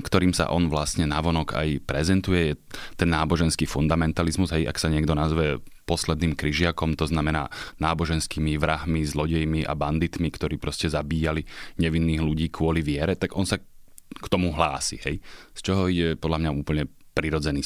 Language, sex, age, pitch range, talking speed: Slovak, male, 30-49, 75-85 Hz, 155 wpm